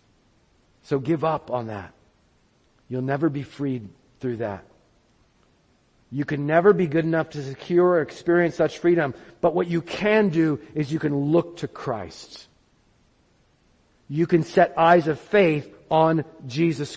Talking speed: 150 wpm